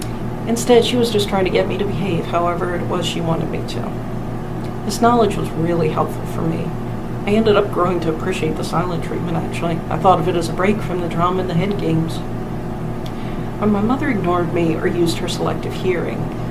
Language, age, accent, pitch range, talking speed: English, 50-69, American, 165-190 Hz, 210 wpm